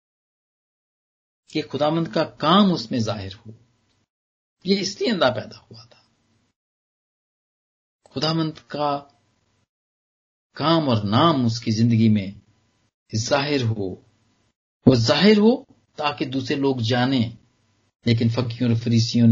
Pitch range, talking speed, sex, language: 110-155 Hz, 115 wpm, male, Punjabi